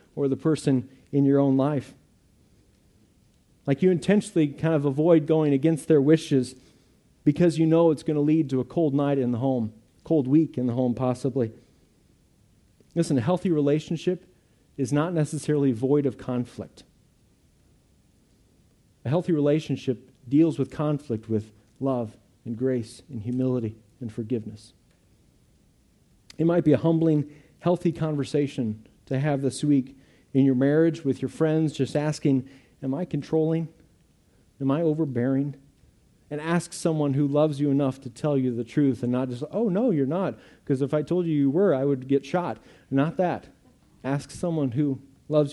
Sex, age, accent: male, 40-59, American